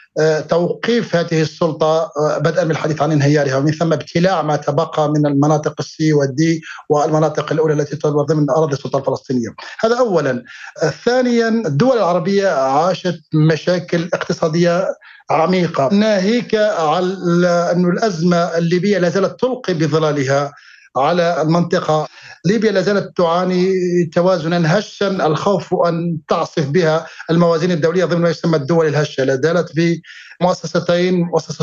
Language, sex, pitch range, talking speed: Arabic, male, 155-185 Hz, 120 wpm